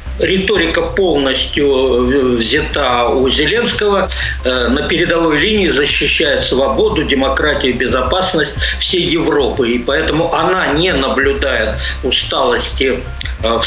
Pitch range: 115-170 Hz